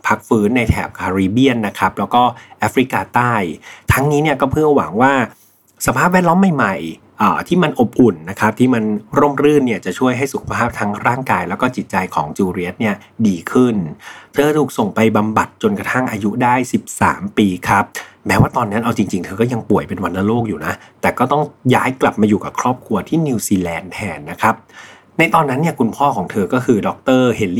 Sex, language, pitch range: male, Thai, 100-130 Hz